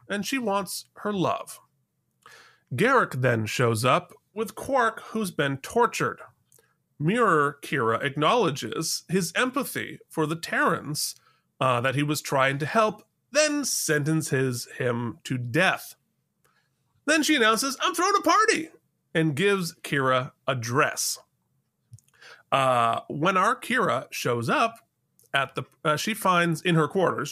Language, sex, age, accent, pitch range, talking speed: English, male, 30-49, American, 135-190 Hz, 125 wpm